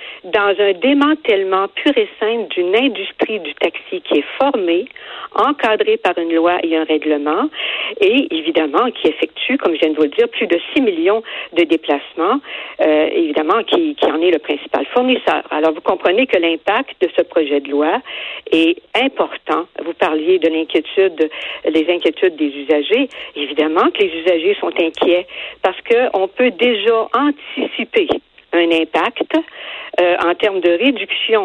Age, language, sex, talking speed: 60-79, French, female, 160 wpm